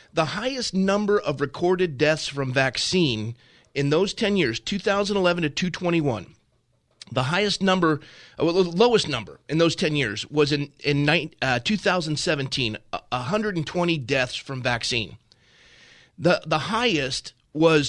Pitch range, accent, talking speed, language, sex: 145-190 Hz, American, 125 wpm, English, male